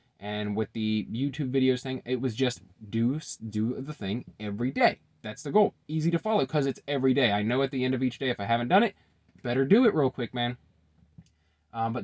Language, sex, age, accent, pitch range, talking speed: English, male, 20-39, American, 95-130 Hz, 230 wpm